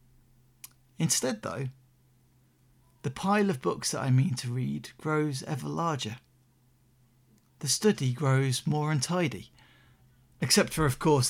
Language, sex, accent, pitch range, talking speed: English, male, British, 125-155 Hz, 120 wpm